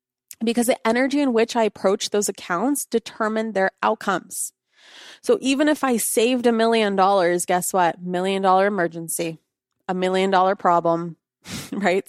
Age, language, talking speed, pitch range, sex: 20-39, English, 150 wpm, 180-230 Hz, female